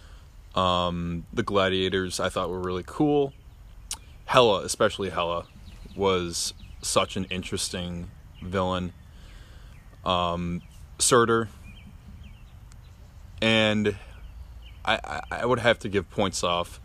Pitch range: 90-100 Hz